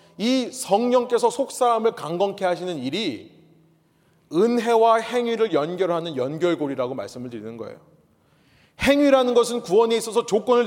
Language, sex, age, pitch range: Korean, male, 30-49, 165-225 Hz